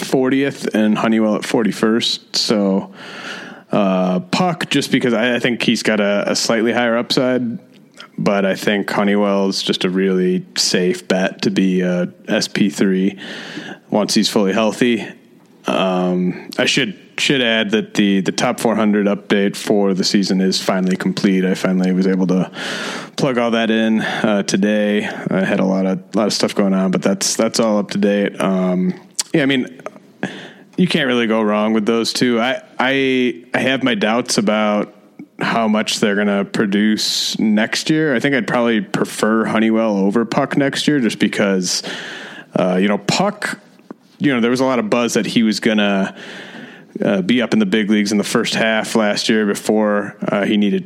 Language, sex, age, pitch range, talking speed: English, male, 30-49, 95-115 Hz, 185 wpm